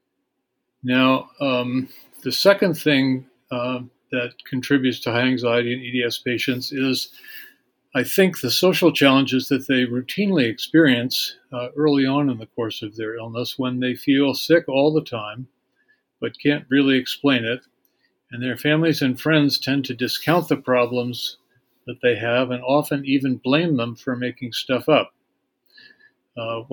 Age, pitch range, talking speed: 50-69, 125-145 Hz, 155 wpm